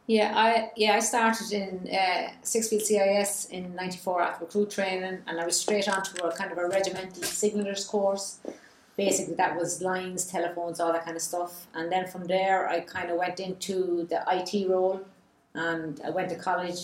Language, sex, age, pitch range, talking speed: English, female, 30-49, 170-195 Hz, 195 wpm